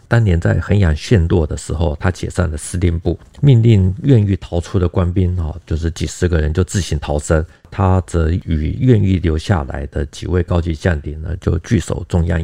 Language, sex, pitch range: Chinese, male, 80-100 Hz